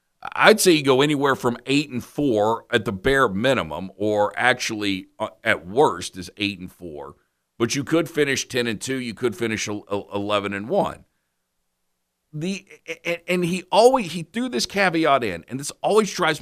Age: 50-69